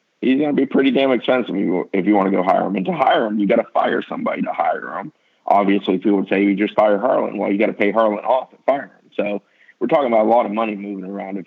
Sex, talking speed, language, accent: male, 290 wpm, English, American